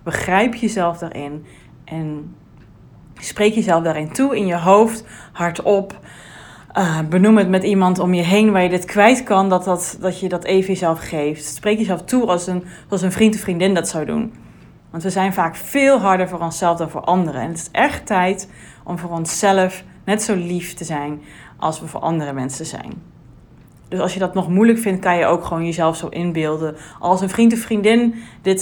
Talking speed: 200 wpm